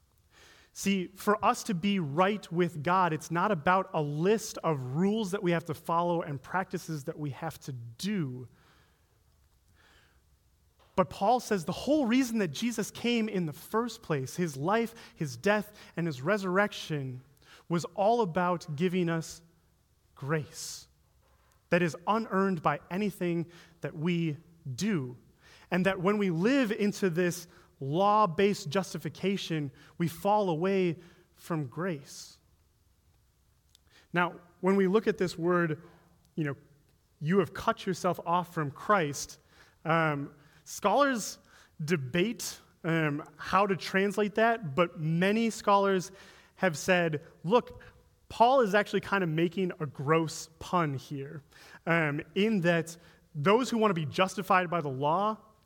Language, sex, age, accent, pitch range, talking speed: English, male, 30-49, American, 160-200 Hz, 135 wpm